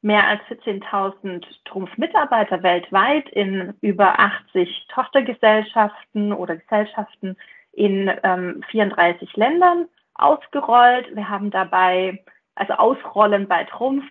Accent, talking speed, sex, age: German, 100 wpm, female, 30-49